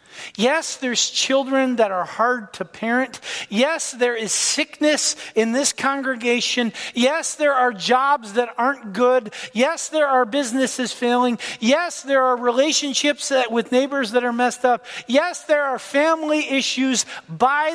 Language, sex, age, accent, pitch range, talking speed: English, male, 40-59, American, 255-325 Hz, 145 wpm